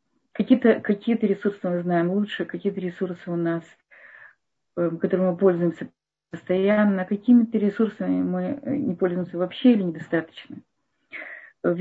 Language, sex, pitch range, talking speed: Russian, female, 185-230 Hz, 115 wpm